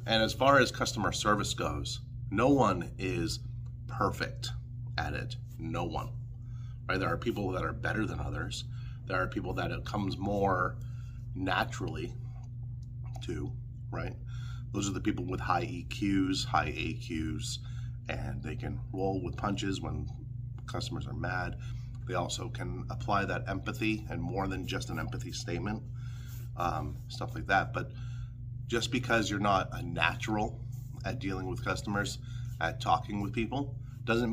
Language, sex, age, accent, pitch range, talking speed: English, male, 30-49, American, 115-125 Hz, 150 wpm